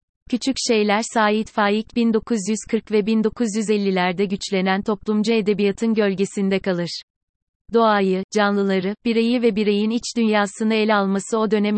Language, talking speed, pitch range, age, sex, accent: Turkish, 115 wpm, 190-220 Hz, 30-49, female, native